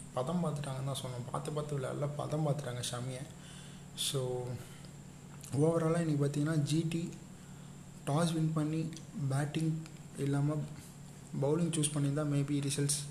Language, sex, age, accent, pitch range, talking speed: Tamil, male, 20-39, native, 135-155 Hz, 115 wpm